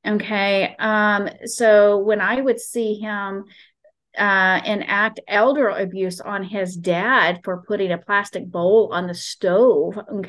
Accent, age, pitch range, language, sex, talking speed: American, 30-49, 190-230 Hz, English, female, 140 wpm